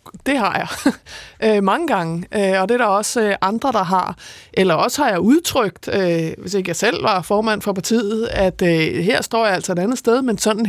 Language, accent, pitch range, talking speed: Danish, native, 195-245 Hz, 200 wpm